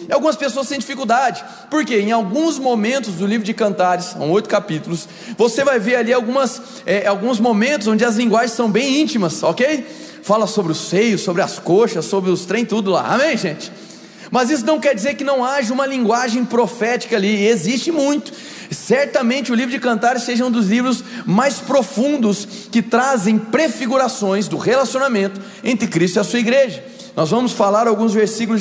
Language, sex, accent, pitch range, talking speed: Portuguese, male, Brazilian, 200-255 Hz, 180 wpm